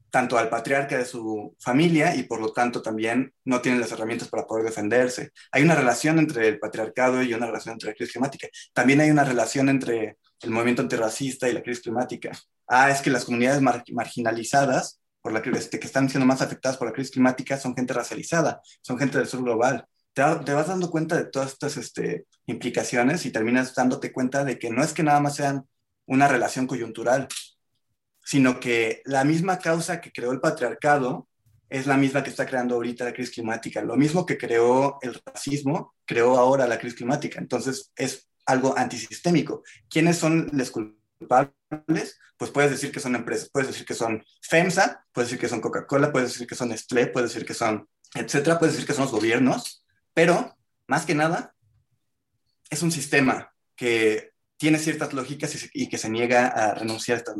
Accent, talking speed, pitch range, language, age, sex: Mexican, 190 wpm, 120-145 Hz, Spanish, 30-49, male